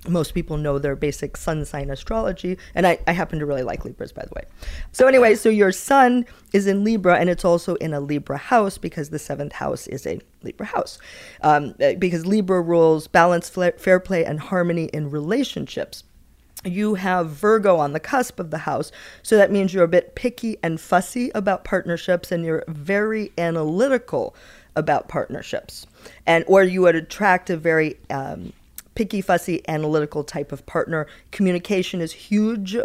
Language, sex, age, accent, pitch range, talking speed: English, female, 40-59, American, 155-195 Hz, 175 wpm